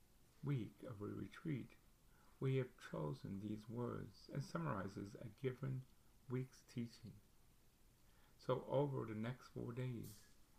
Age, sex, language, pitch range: 60-79, male, English, 100-125 Hz